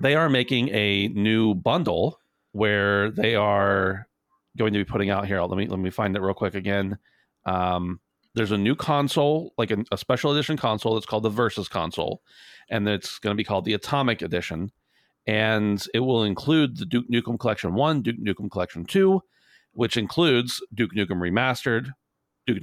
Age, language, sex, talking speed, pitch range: 40-59, English, male, 180 wpm, 100-125 Hz